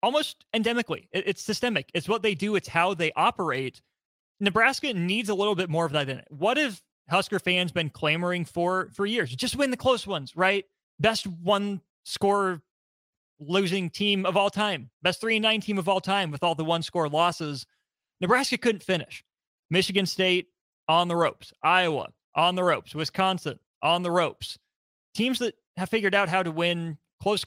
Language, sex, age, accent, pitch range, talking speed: English, male, 30-49, American, 165-220 Hz, 175 wpm